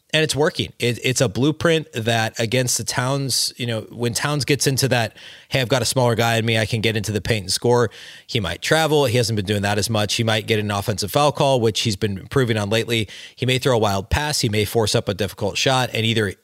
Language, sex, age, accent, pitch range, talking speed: English, male, 30-49, American, 110-135 Hz, 265 wpm